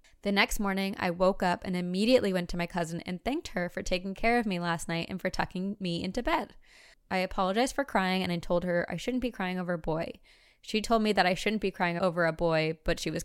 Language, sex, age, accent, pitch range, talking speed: English, female, 20-39, American, 170-205 Hz, 260 wpm